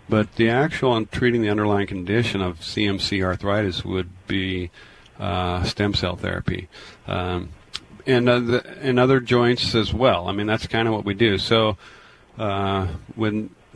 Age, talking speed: 40-59, 160 wpm